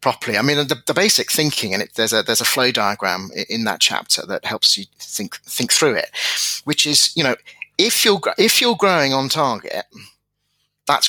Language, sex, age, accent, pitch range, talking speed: English, male, 30-49, British, 120-155 Hz, 200 wpm